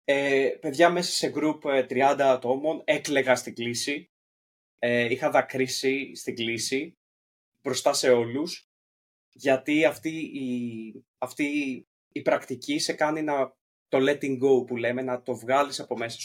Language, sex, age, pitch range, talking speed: Greek, male, 20-39, 125-150 Hz, 140 wpm